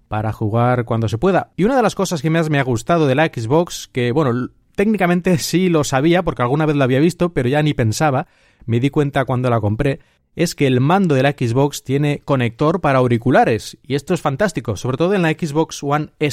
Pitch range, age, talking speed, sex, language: 125-160 Hz, 30-49, 225 wpm, male, Spanish